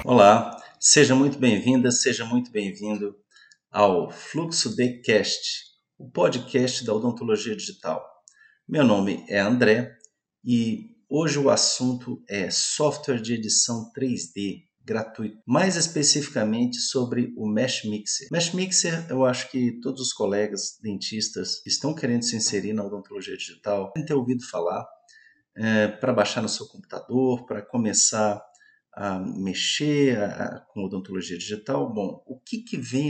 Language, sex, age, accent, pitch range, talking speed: Portuguese, male, 50-69, Brazilian, 105-145 Hz, 140 wpm